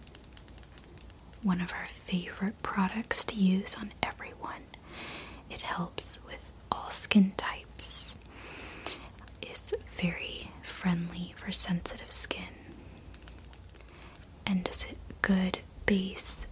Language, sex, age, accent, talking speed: English, female, 30-49, American, 95 wpm